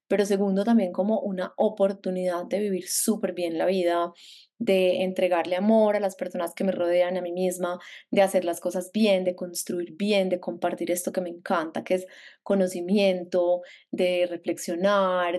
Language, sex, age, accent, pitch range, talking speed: Spanish, female, 20-39, Colombian, 180-220 Hz, 170 wpm